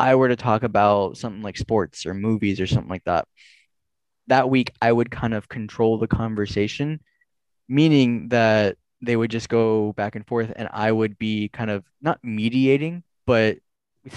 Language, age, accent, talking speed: English, 10-29, American, 175 wpm